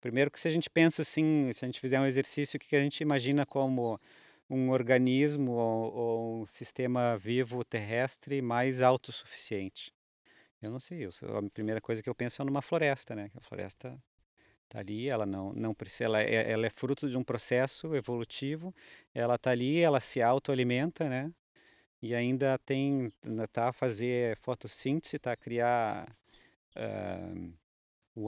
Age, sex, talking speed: 30-49, male, 165 wpm